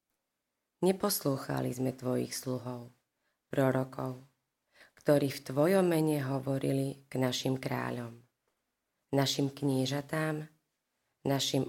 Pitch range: 125-150 Hz